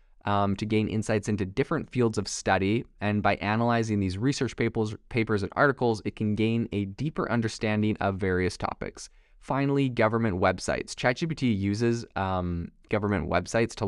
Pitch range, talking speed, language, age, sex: 95-115 Hz, 155 wpm, English, 20-39, male